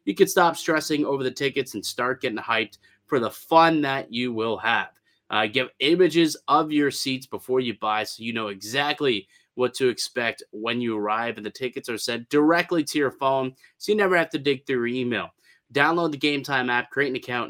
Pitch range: 120-155 Hz